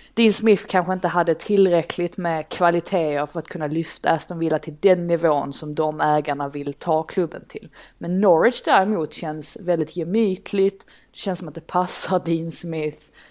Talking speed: 170 wpm